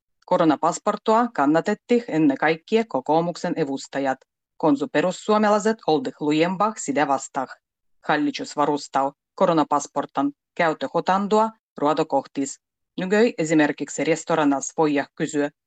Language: Finnish